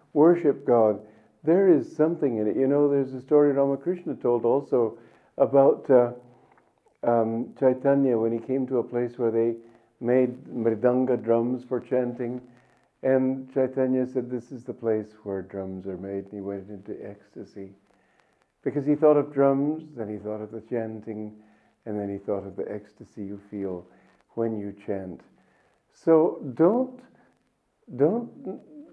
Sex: male